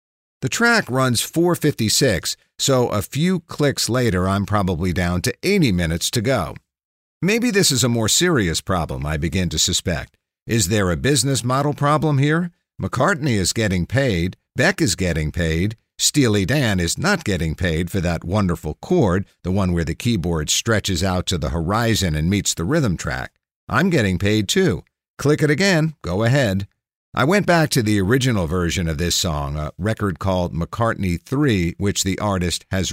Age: 50-69